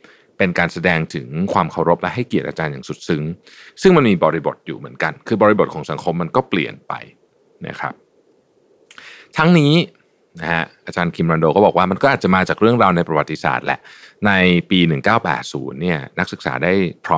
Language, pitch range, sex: Thai, 80-125 Hz, male